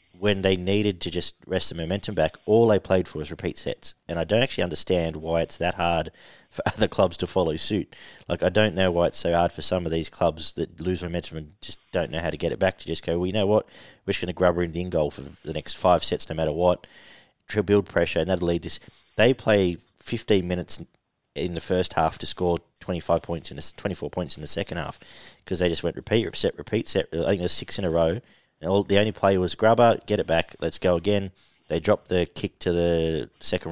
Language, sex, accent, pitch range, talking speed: English, male, Australian, 85-100 Hz, 255 wpm